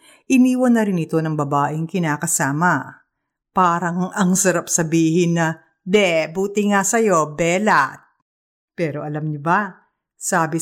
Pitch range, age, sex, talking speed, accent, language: 160-230 Hz, 50-69, female, 120 wpm, native, Filipino